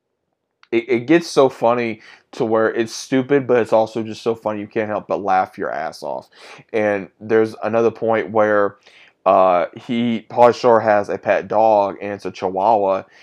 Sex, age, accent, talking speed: male, 20-39, American, 175 wpm